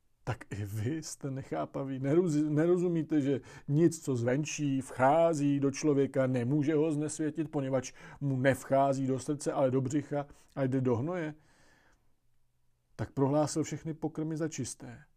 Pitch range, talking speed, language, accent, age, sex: 125-160 Hz, 135 wpm, Czech, native, 40-59, male